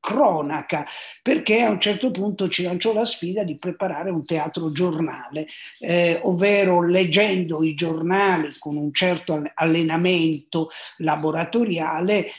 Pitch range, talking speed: 150-190 Hz, 120 wpm